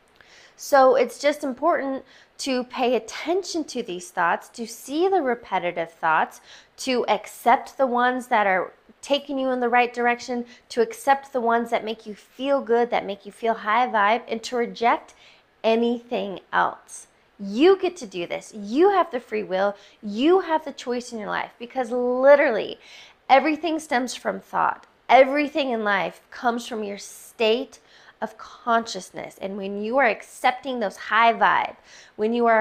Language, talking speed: English, 165 wpm